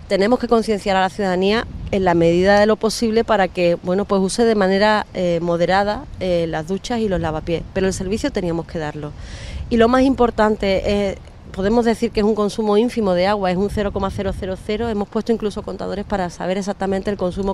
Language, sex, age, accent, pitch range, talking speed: Spanish, female, 30-49, Spanish, 185-225 Hz, 200 wpm